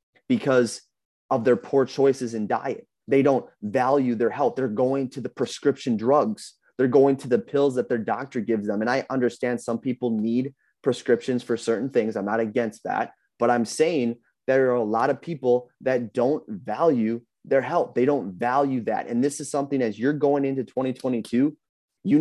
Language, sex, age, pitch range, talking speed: English, male, 30-49, 115-135 Hz, 190 wpm